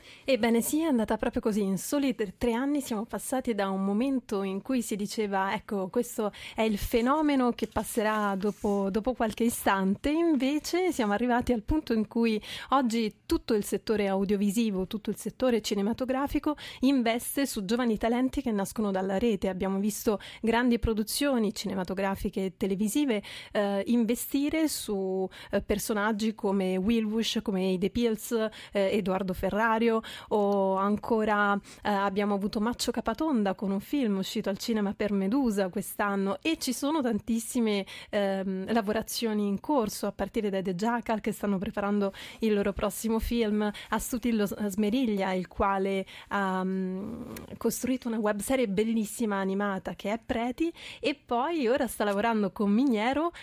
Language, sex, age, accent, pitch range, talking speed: Italian, female, 30-49, native, 200-245 Hz, 145 wpm